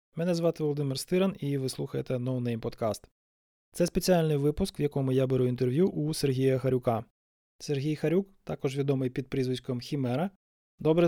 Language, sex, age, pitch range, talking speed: Ukrainian, male, 20-39, 125-155 Hz, 150 wpm